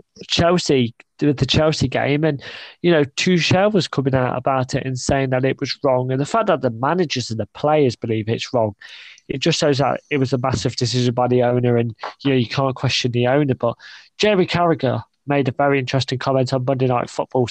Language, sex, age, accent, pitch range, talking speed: English, male, 20-39, British, 125-145 Hz, 215 wpm